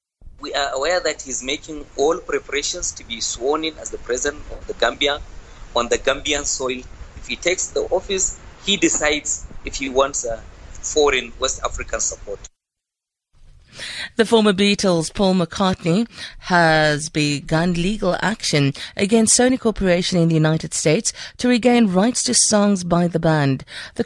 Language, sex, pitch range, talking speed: English, female, 155-220 Hz, 150 wpm